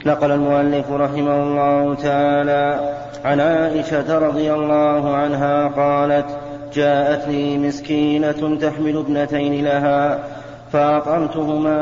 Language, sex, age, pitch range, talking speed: Arabic, male, 30-49, 145-150 Hz, 90 wpm